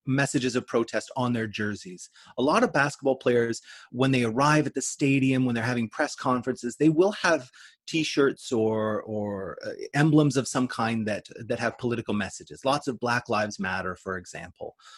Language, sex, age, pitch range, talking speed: English, male, 30-49, 120-150 Hz, 180 wpm